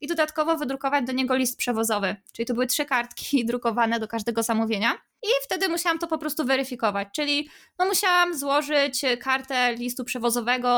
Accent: native